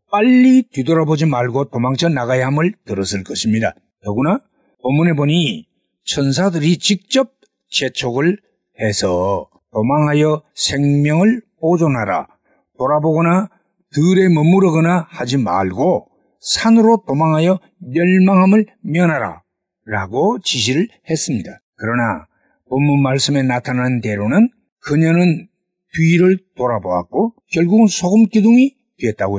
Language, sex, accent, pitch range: Korean, male, native, 135-195 Hz